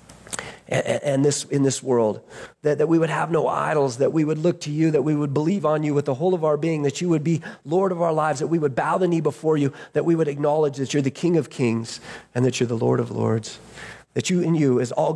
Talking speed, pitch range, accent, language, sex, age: 275 wpm, 135-175 Hz, American, English, male, 40-59